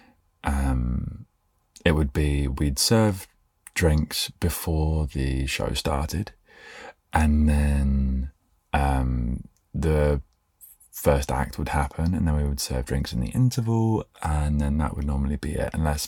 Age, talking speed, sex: 20-39, 135 wpm, male